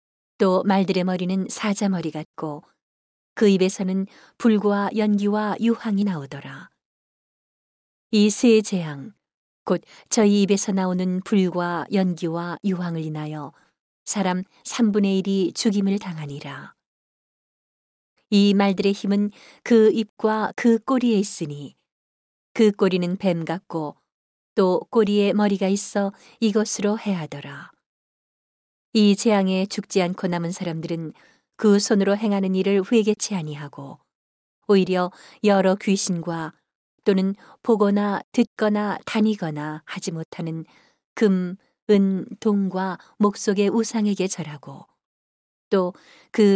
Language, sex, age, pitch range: Korean, female, 40-59, 175-210 Hz